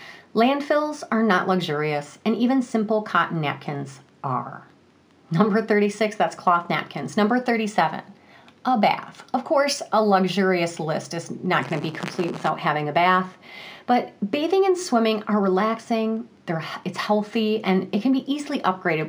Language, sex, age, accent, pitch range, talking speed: English, female, 40-59, American, 175-225 Hz, 150 wpm